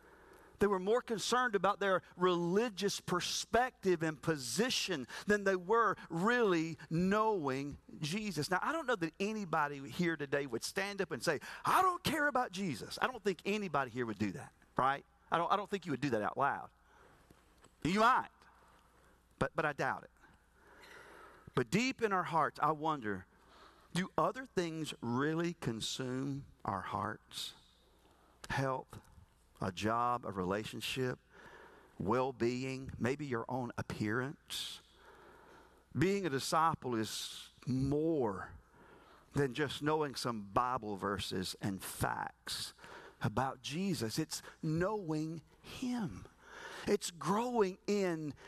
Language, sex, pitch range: English, male, 140-215 Hz